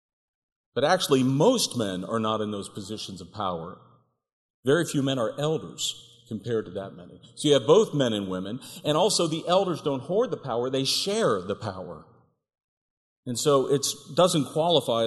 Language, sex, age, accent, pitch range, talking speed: English, male, 50-69, American, 120-165 Hz, 175 wpm